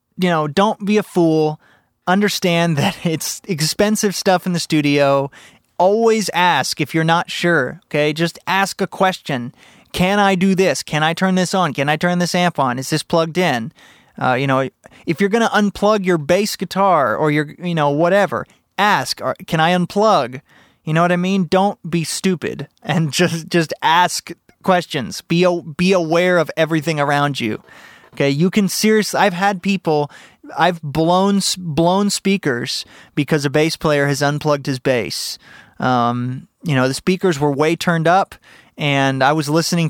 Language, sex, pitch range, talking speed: English, male, 145-180 Hz, 175 wpm